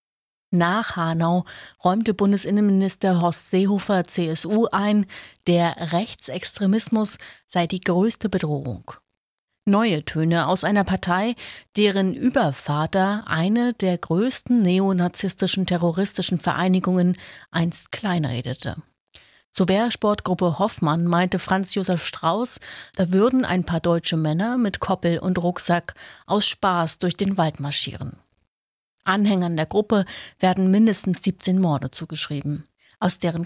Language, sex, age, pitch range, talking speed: German, female, 30-49, 170-205 Hz, 110 wpm